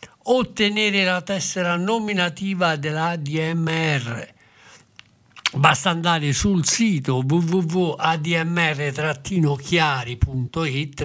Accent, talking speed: native, 55 wpm